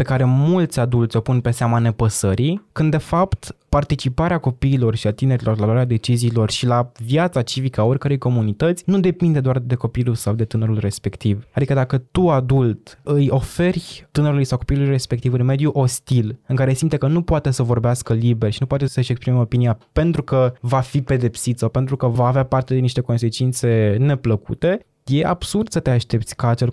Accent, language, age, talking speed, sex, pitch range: native, Romanian, 20-39, 190 wpm, male, 115-140 Hz